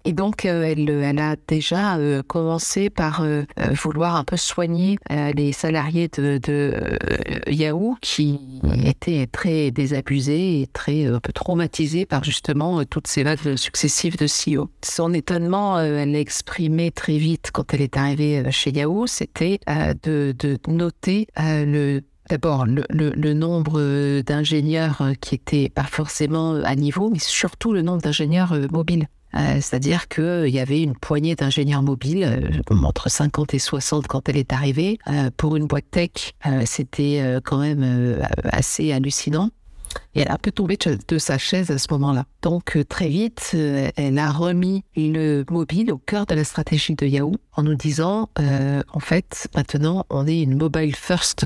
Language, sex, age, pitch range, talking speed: French, female, 50-69, 140-170 Hz, 175 wpm